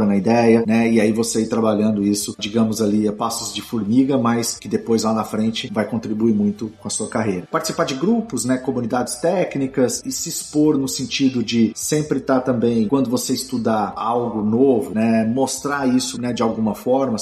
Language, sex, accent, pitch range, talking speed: Portuguese, male, Brazilian, 105-130 Hz, 190 wpm